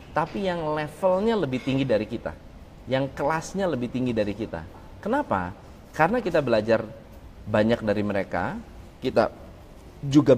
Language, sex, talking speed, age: Indonesian, male, 125 wpm, 30-49